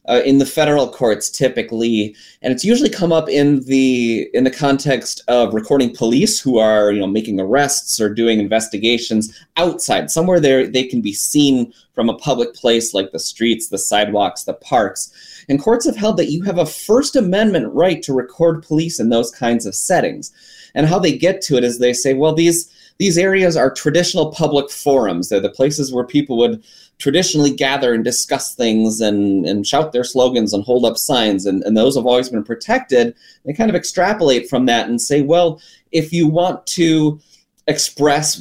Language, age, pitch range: English, 20-39, 115-160 Hz